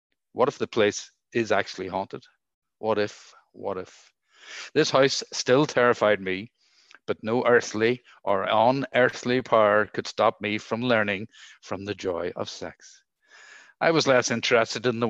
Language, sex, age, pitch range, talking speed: English, male, 50-69, 105-120 Hz, 150 wpm